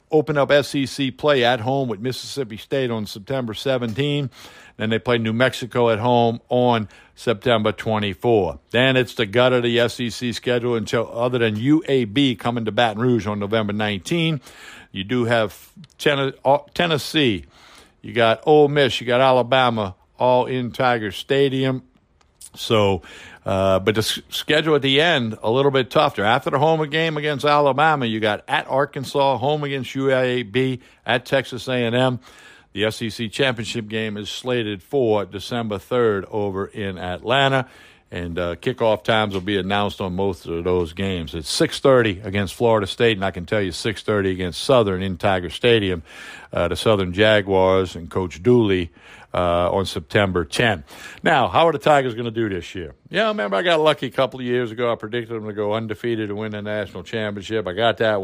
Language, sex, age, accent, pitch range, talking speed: English, male, 60-79, American, 100-130 Hz, 175 wpm